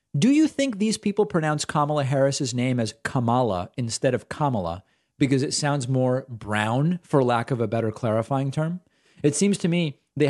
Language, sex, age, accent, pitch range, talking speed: English, male, 40-59, American, 110-145 Hz, 180 wpm